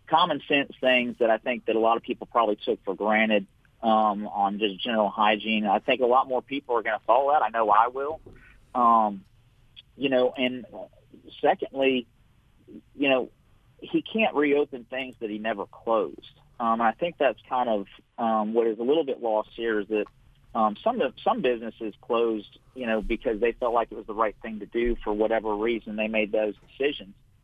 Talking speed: 200 wpm